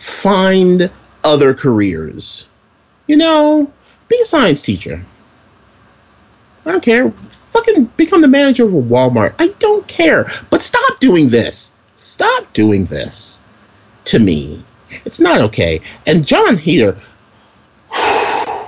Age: 30-49